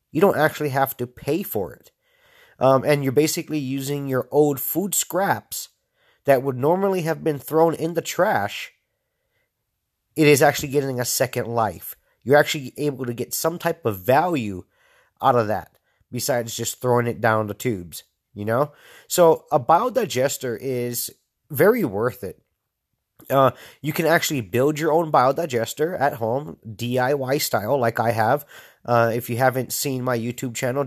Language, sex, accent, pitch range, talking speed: English, male, American, 120-150 Hz, 165 wpm